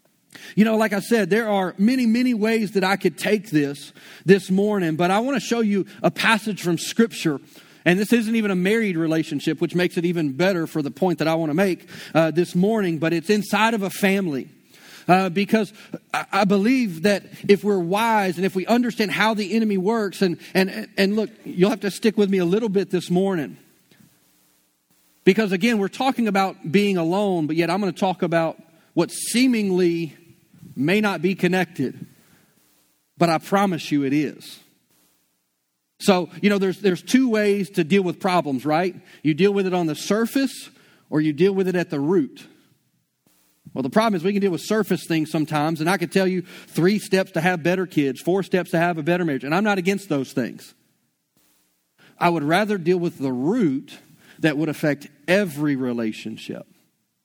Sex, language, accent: male, English, American